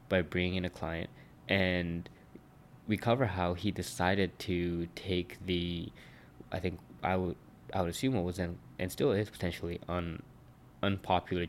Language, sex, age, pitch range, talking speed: English, male, 20-39, 85-95 Hz, 160 wpm